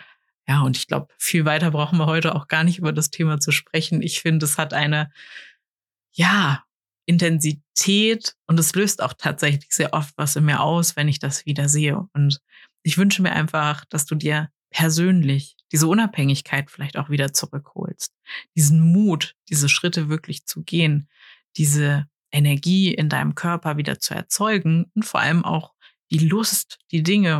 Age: 30-49